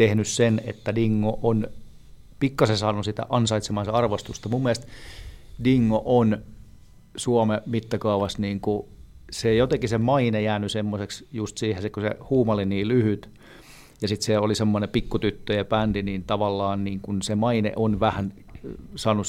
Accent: native